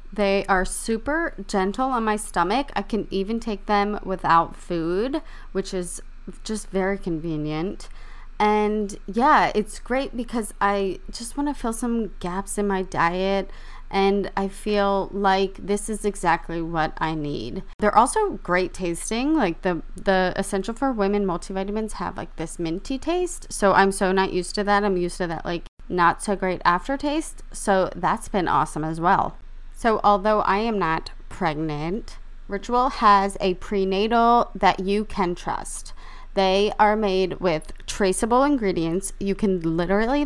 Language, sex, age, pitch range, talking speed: English, female, 20-39, 180-215 Hz, 155 wpm